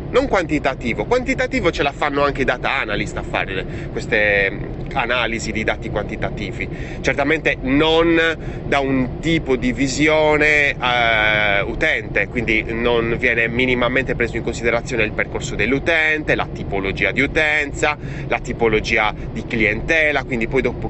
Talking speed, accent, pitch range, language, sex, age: 135 wpm, native, 115-165 Hz, Italian, male, 30-49